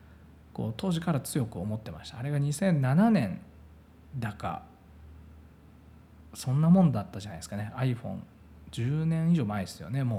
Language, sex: Japanese, male